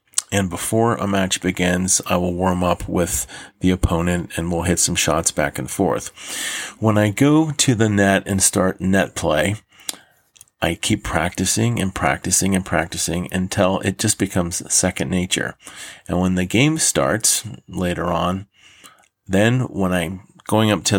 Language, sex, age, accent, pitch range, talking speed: English, male, 40-59, American, 90-105 Hz, 160 wpm